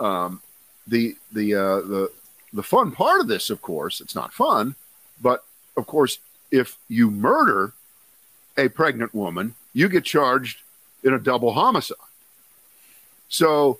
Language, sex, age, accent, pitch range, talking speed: English, male, 50-69, American, 100-130 Hz, 140 wpm